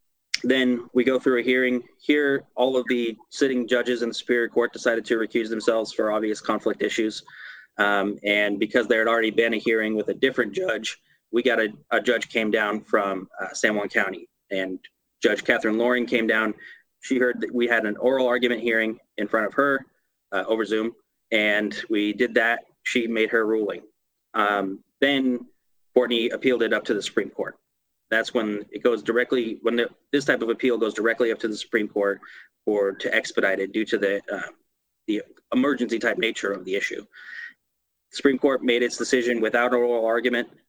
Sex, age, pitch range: male, 30-49, 110-125 Hz